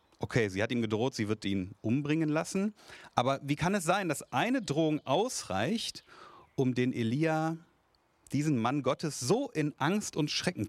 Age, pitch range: 30-49, 110-155 Hz